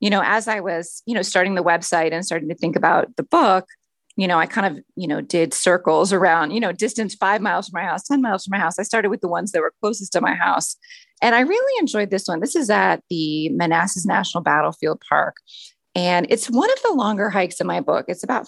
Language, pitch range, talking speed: English, 170-230 Hz, 250 wpm